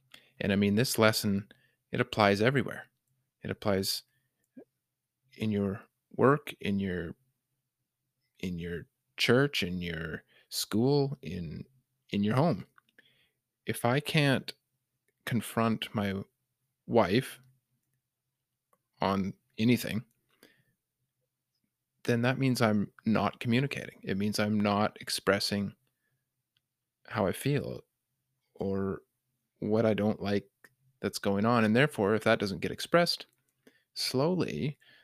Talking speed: 110 wpm